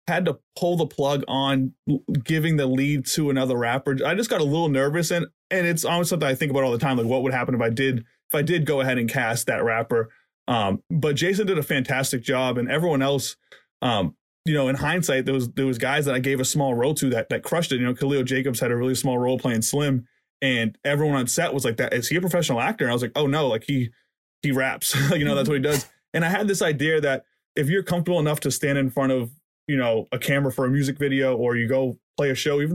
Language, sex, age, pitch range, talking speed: English, male, 20-39, 125-145 Hz, 270 wpm